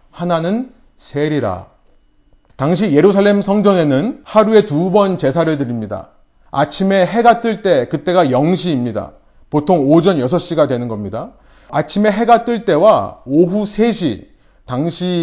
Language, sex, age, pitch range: Korean, male, 30-49, 150-205 Hz